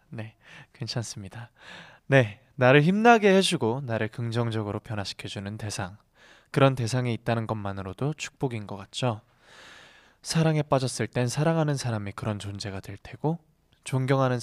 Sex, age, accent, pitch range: male, 20-39, native, 105-135 Hz